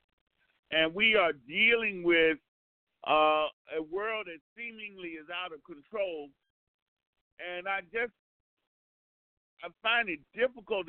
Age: 50-69